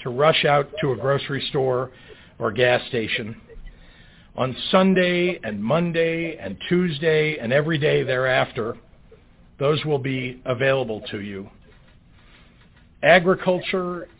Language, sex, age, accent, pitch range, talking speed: English, male, 50-69, American, 130-175 Hz, 115 wpm